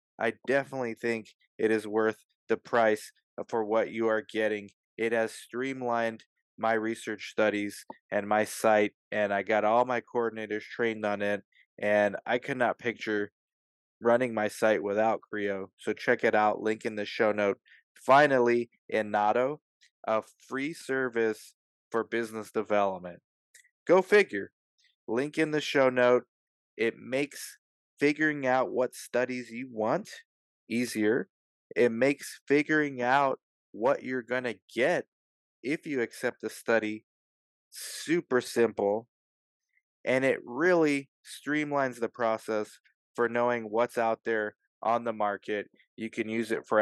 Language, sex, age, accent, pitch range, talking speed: English, male, 20-39, American, 105-125 Hz, 140 wpm